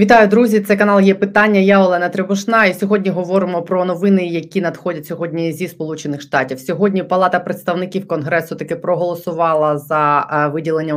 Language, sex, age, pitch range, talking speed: Ukrainian, female, 20-39, 145-165 Hz, 155 wpm